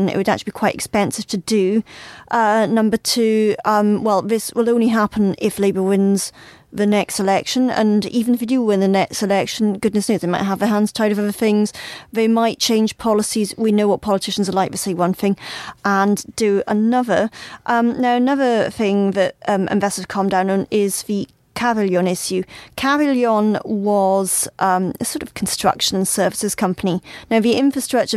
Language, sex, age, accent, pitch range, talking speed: English, female, 30-49, British, 200-235 Hz, 185 wpm